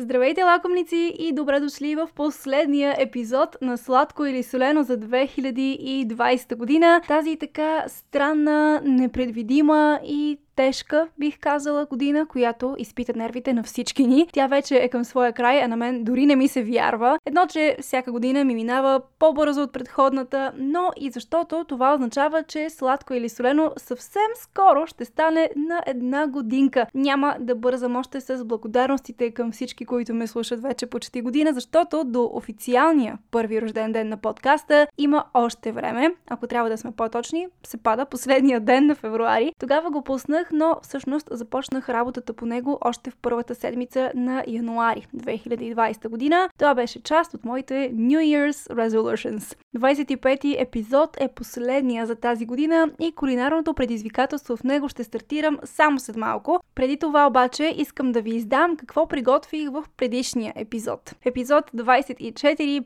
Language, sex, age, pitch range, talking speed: Bulgarian, female, 10-29, 240-295 Hz, 155 wpm